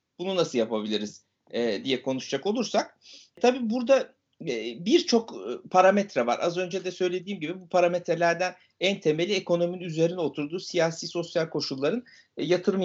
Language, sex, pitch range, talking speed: Turkish, male, 150-245 Hz, 125 wpm